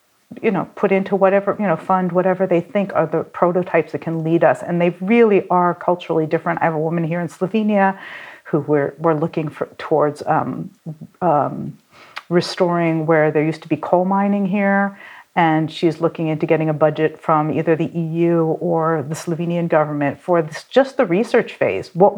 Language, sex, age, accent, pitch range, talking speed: English, female, 50-69, American, 160-200 Hz, 190 wpm